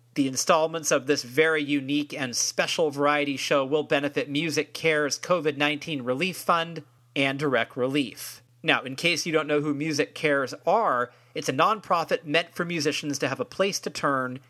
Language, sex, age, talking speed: English, male, 40-59, 175 wpm